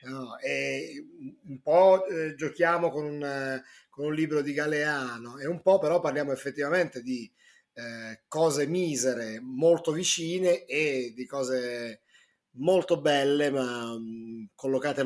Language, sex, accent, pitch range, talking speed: Italian, male, native, 125-150 Hz, 120 wpm